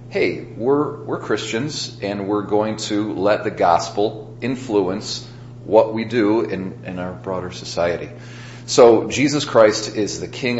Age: 40-59